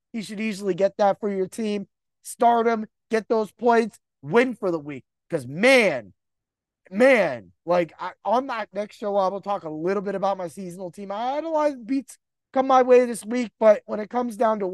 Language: English